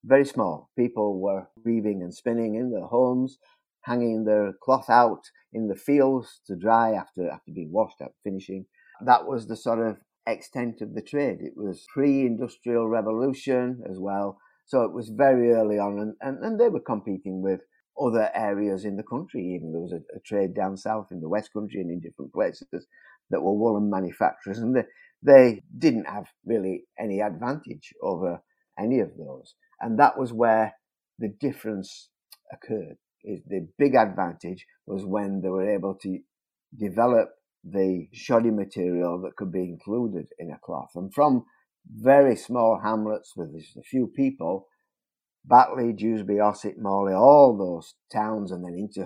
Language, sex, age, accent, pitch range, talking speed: English, male, 50-69, British, 95-120 Hz, 170 wpm